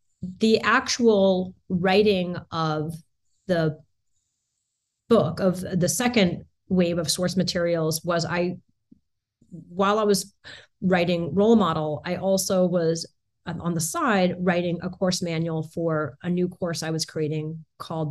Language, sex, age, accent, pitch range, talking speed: English, female, 30-49, American, 160-205 Hz, 130 wpm